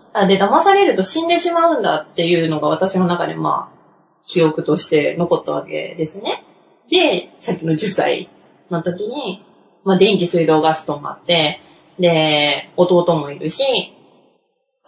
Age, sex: 20-39, female